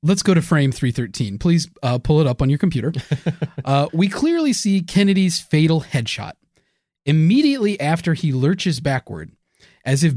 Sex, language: male, English